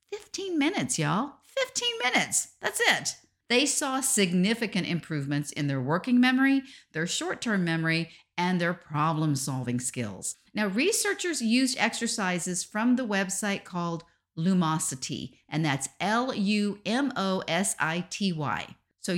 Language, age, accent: English, 50-69, American